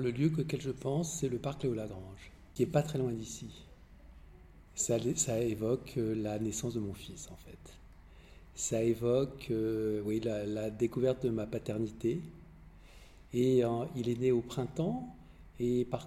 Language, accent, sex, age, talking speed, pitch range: French, French, male, 50-69, 170 wpm, 115-145 Hz